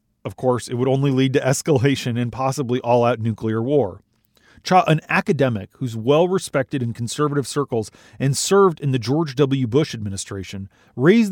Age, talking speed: 40-59, 160 wpm